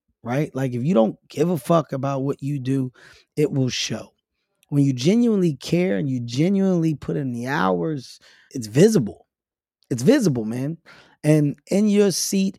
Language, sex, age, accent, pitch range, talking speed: English, male, 20-39, American, 135-165 Hz, 165 wpm